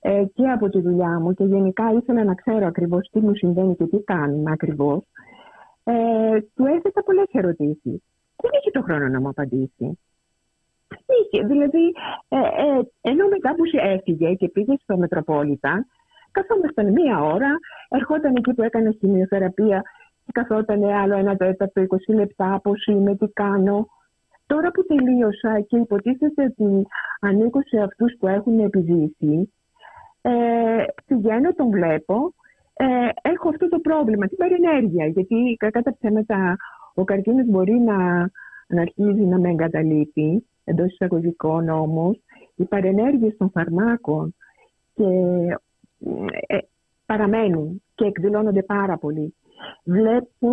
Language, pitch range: Greek, 185-245 Hz